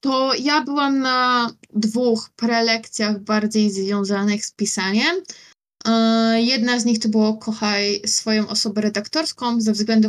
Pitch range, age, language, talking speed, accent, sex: 215-250 Hz, 20-39, Polish, 125 wpm, native, female